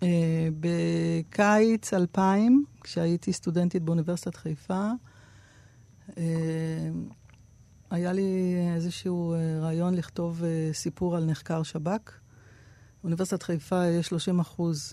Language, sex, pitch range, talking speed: Hebrew, female, 155-180 Hz, 100 wpm